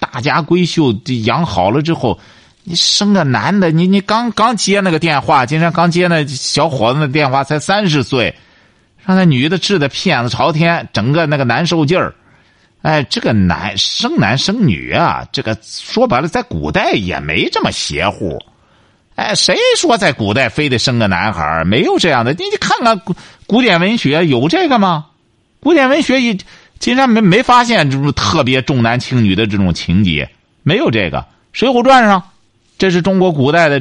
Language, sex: Chinese, male